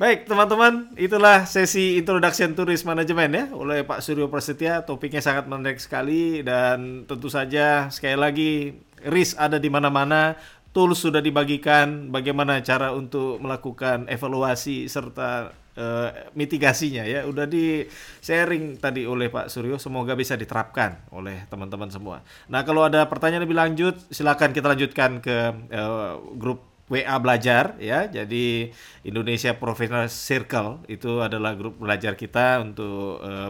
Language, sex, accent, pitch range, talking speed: English, male, Indonesian, 110-145 Hz, 140 wpm